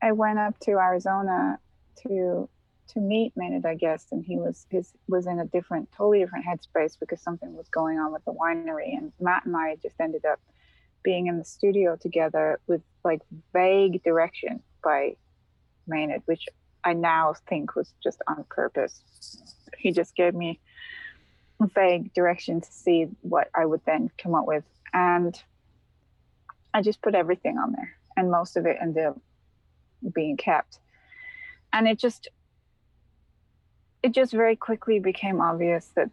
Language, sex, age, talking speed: English, female, 20-39, 160 wpm